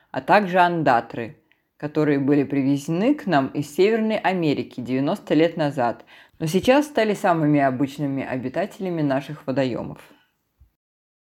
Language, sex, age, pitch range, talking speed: Russian, female, 20-39, 130-160 Hz, 115 wpm